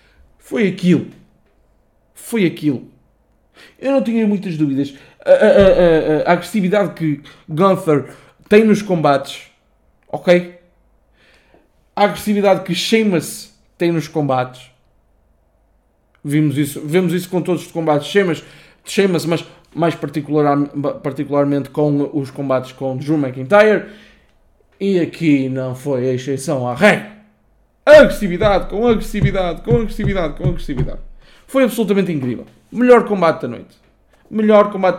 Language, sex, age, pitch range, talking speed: Portuguese, male, 20-39, 150-205 Hz, 125 wpm